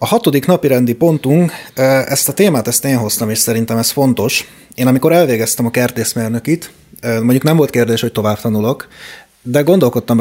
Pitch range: 105-135 Hz